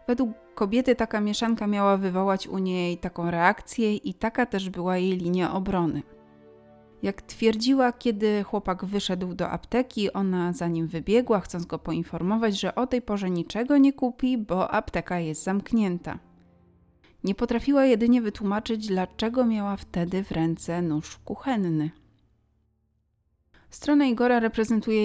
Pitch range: 170-225 Hz